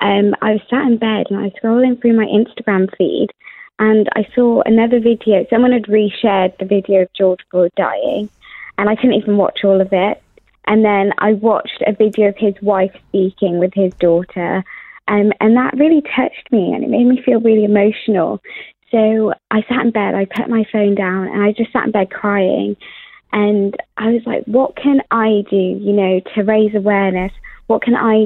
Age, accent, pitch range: 20-39, British, 195-230 Hz